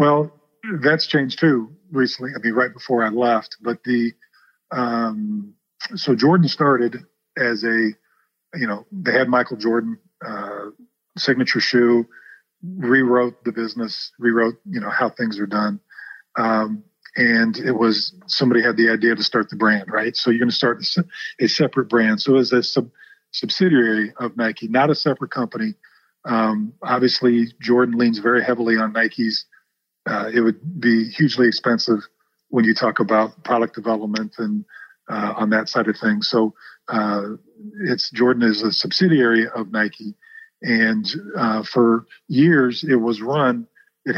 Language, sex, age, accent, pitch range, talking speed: English, male, 40-59, American, 115-150 Hz, 155 wpm